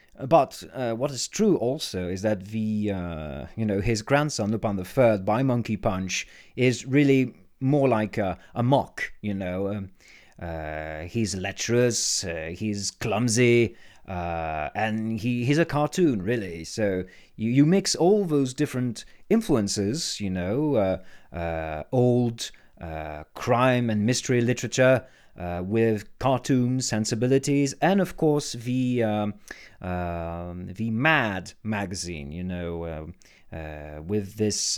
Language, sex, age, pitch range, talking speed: English, male, 30-49, 95-140 Hz, 140 wpm